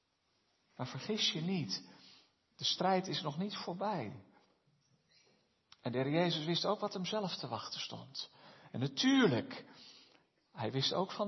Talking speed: 150 wpm